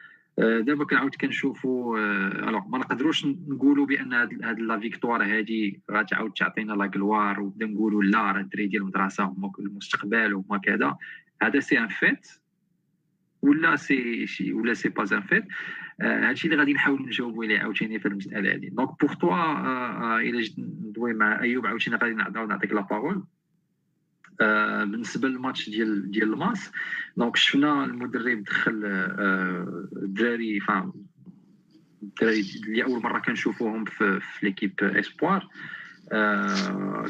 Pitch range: 105-165 Hz